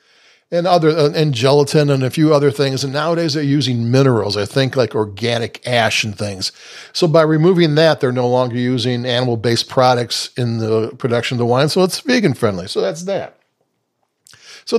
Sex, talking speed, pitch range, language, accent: male, 180 wpm, 120-145 Hz, English, American